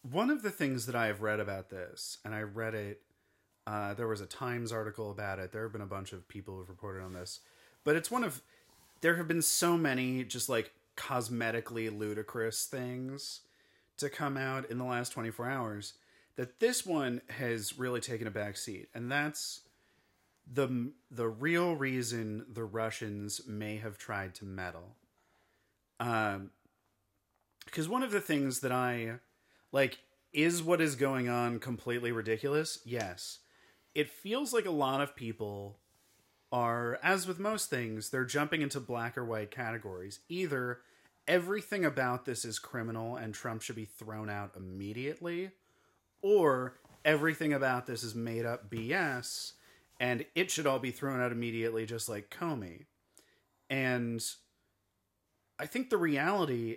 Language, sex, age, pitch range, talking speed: English, male, 30-49, 110-140 Hz, 160 wpm